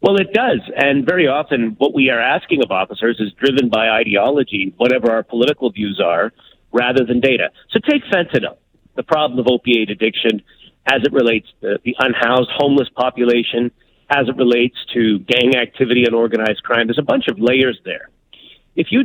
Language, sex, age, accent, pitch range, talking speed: English, male, 50-69, American, 115-145 Hz, 180 wpm